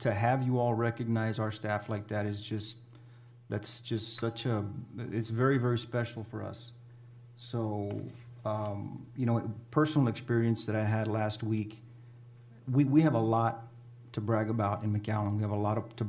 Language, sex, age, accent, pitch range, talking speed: English, male, 40-59, American, 105-120 Hz, 175 wpm